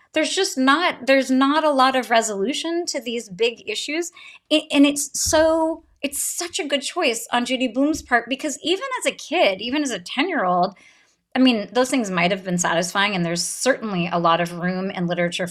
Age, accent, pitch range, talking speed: 30-49, American, 200-300 Hz, 200 wpm